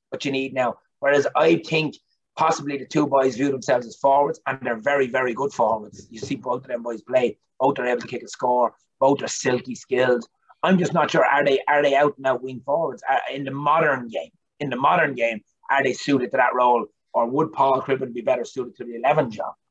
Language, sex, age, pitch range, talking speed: English, male, 30-49, 125-150 Hz, 235 wpm